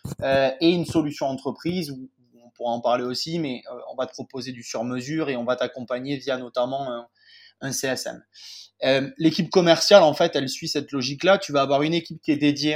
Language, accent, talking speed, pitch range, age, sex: French, French, 210 wpm, 130-155 Hz, 20-39, male